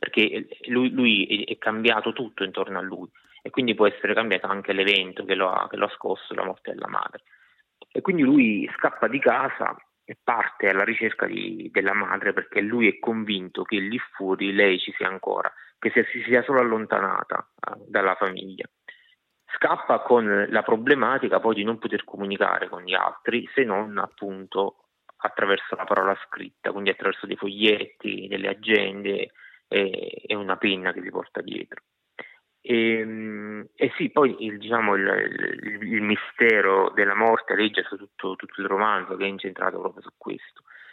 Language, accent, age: Italian, native, 30-49